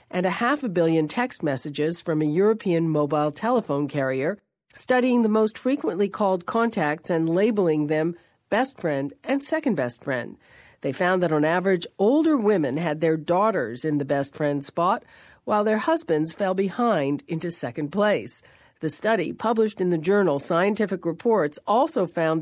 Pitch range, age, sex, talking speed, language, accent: 150-210 Hz, 50-69, female, 165 wpm, English, American